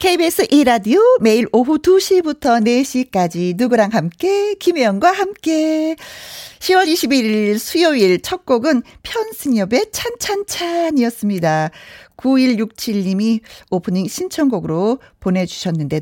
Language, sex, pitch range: Korean, female, 205-310 Hz